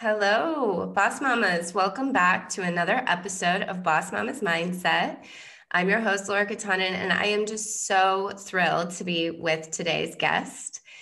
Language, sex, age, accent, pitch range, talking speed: English, female, 20-39, American, 180-210 Hz, 150 wpm